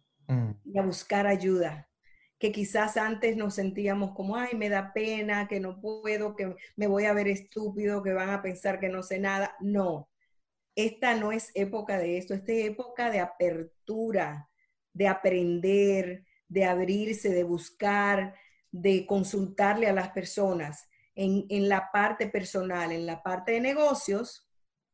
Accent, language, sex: American, Spanish, female